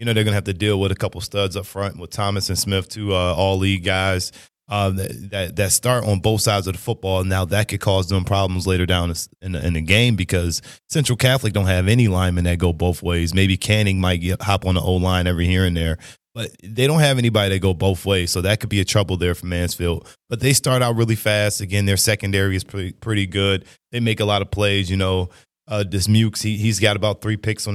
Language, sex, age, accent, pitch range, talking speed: English, male, 20-39, American, 90-110 Hz, 255 wpm